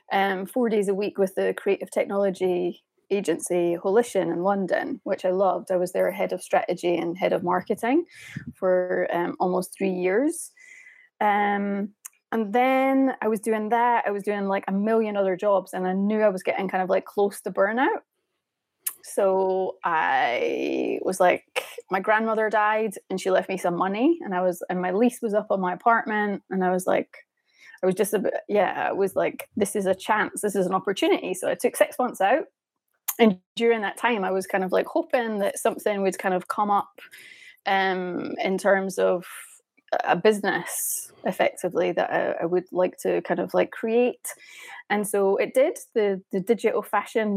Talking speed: 190 wpm